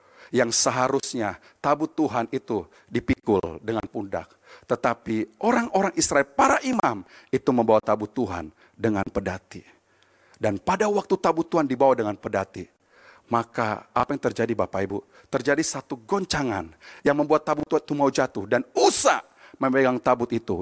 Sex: male